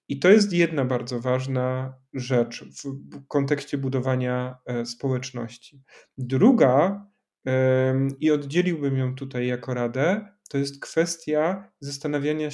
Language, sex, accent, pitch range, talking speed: Polish, male, native, 135-165 Hz, 105 wpm